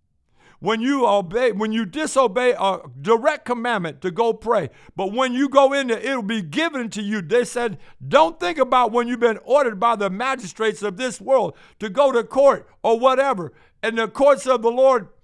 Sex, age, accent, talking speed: male, 60-79, American, 195 wpm